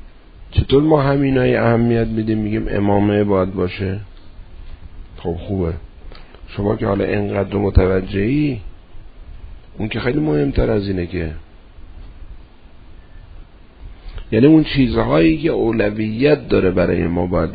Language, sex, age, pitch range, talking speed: Persian, male, 50-69, 85-115 Hz, 115 wpm